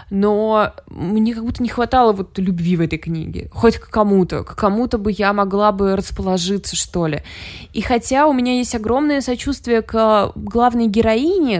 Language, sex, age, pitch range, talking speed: Russian, female, 20-39, 175-220 Hz, 170 wpm